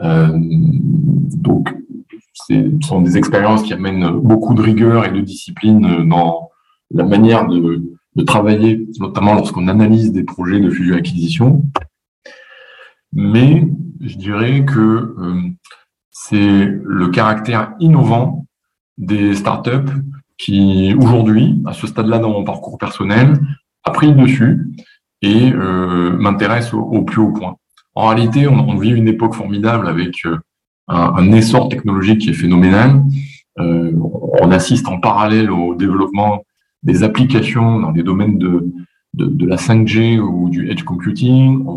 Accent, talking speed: French, 140 wpm